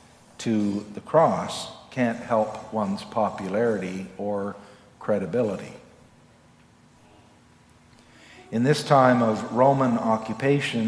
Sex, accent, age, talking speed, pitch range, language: male, American, 50-69, 85 wpm, 115-135 Hz, English